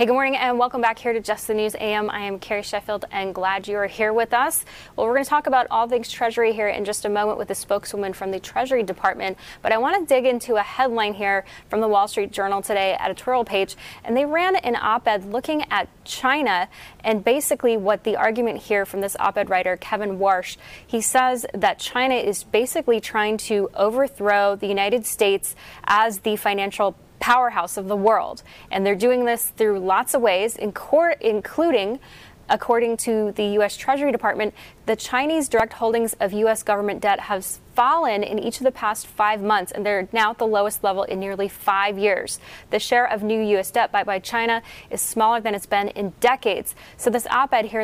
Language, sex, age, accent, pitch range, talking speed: English, female, 10-29, American, 200-235 Hz, 205 wpm